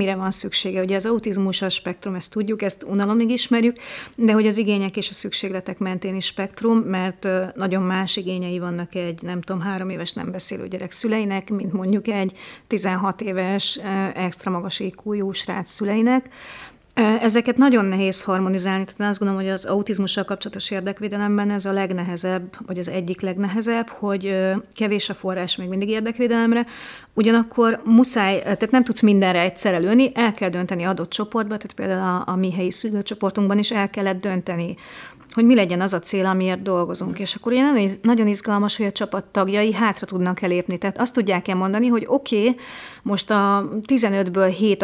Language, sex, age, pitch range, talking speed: Hungarian, female, 30-49, 185-220 Hz, 170 wpm